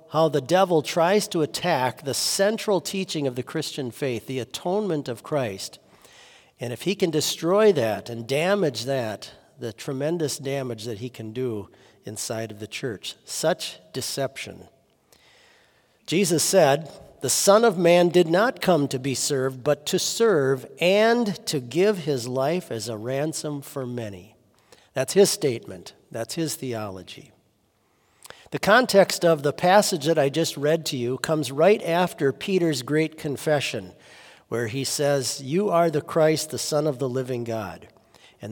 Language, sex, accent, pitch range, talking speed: English, male, American, 125-175 Hz, 155 wpm